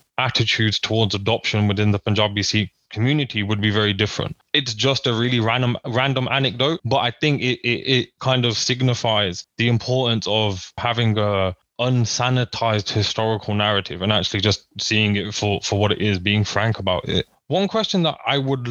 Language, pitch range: English, 105-125 Hz